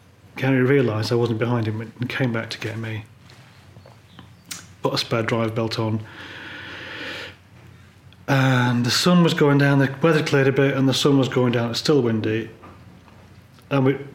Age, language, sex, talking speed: 30-49, English, male, 170 wpm